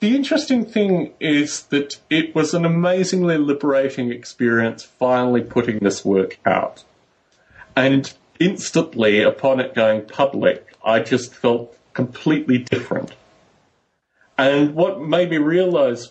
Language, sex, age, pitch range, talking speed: English, male, 30-49, 115-160 Hz, 120 wpm